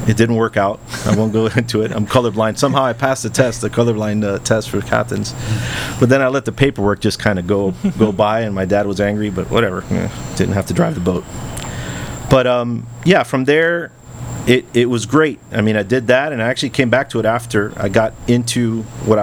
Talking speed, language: 235 wpm, English